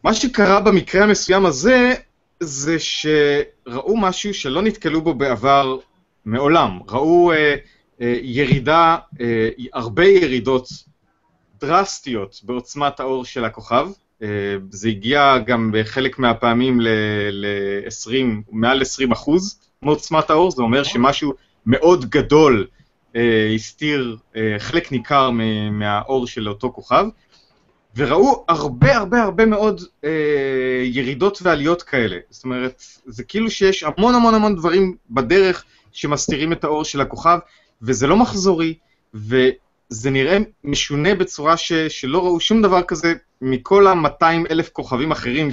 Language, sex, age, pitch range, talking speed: Hebrew, male, 30-49, 120-170 Hz, 125 wpm